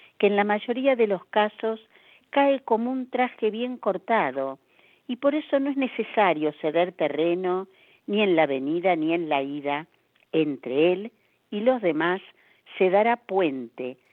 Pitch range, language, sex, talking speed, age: 155-225 Hz, Spanish, female, 155 wpm, 50-69